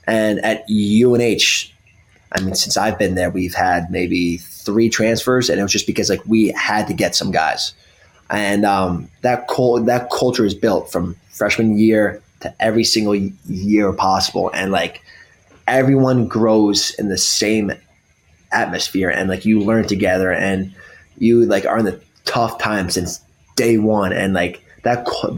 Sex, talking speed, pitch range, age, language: male, 165 wpm, 100-120 Hz, 20-39, English